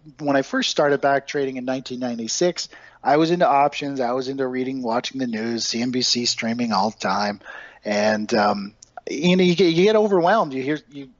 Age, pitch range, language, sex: 40-59, 125-150 Hz, English, male